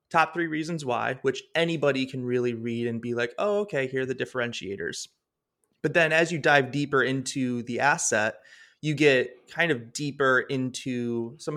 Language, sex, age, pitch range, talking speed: English, male, 20-39, 120-140 Hz, 175 wpm